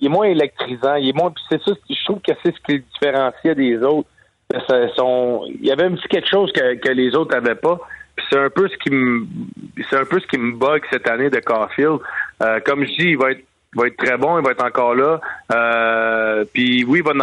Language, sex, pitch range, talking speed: French, male, 120-150 Hz, 245 wpm